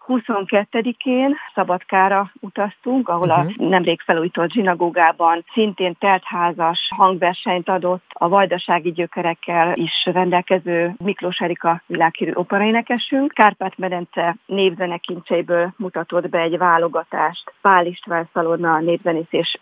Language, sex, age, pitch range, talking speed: Hungarian, female, 40-59, 170-205 Hz, 95 wpm